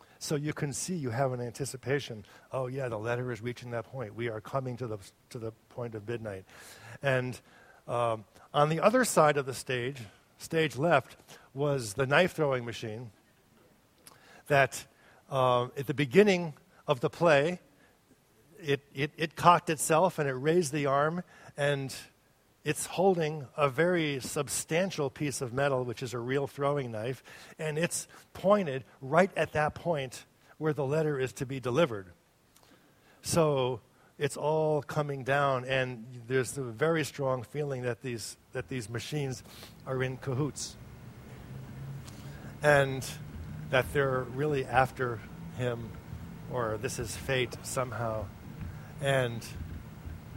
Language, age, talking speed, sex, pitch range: English, 50-69, 140 wpm, male, 120-150 Hz